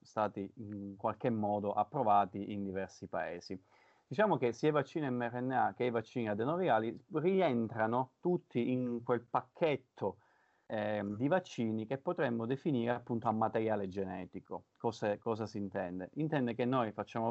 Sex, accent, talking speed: male, native, 140 wpm